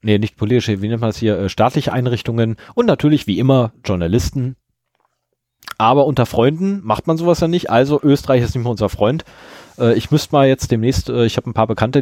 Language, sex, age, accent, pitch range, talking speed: German, male, 30-49, German, 110-145 Hz, 200 wpm